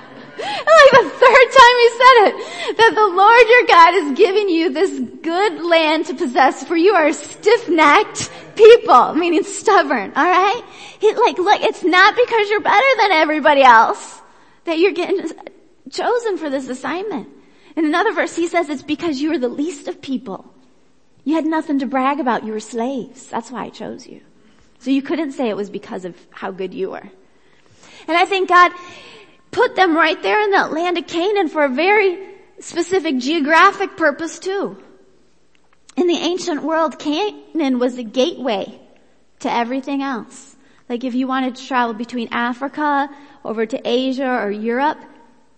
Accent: American